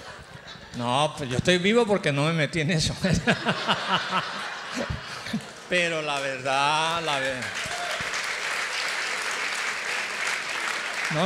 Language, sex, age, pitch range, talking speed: English, male, 50-69, 130-175 Hz, 90 wpm